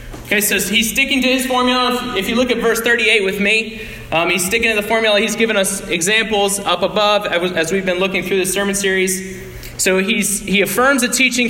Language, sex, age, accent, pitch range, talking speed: English, male, 20-39, American, 175-225 Hz, 215 wpm